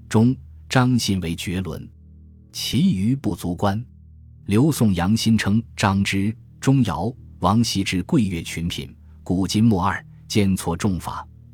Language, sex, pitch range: Chinese, male, 85-115 Hz